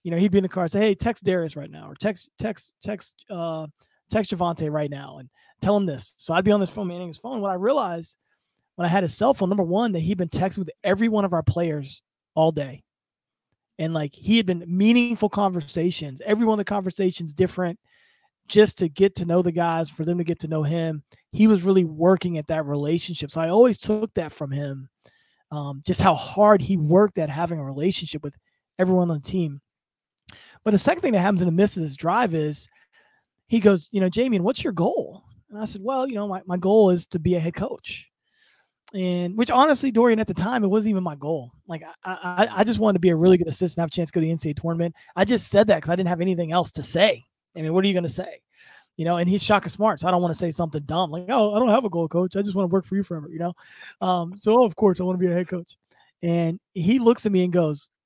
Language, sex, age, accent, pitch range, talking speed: English, male, 20-39, American, 165-205 Hz, 265 wpm